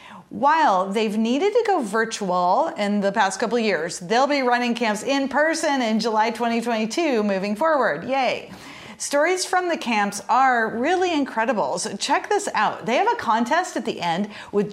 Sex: female